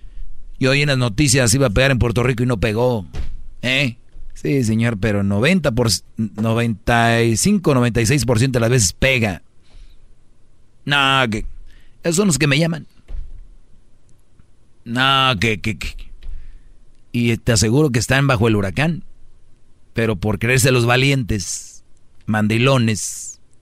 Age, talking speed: 40-59, 125 wpm